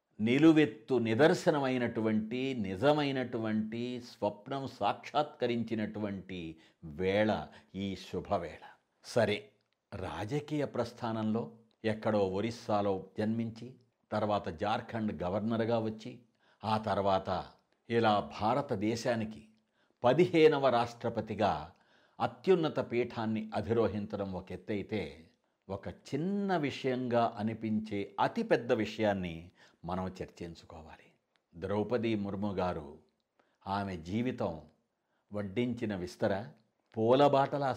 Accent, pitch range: native, 100-125 Hz